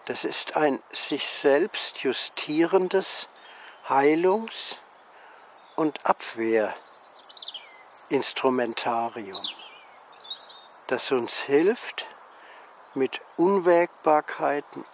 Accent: German